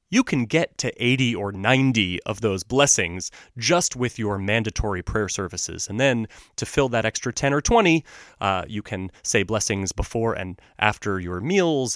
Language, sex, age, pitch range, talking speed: English, male, 30-49, 95-125 Hz, 175 wpm